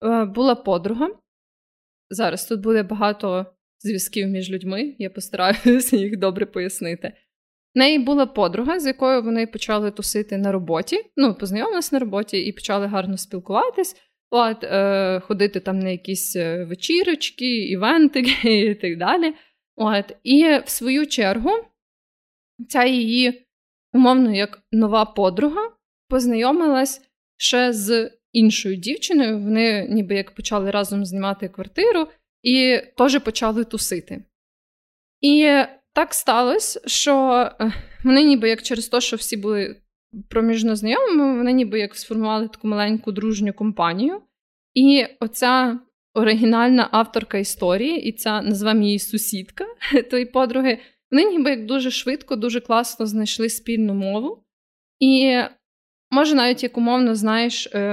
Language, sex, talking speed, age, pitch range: Ukrainian, female, 120 wpm, 20-39, 205-260 Hz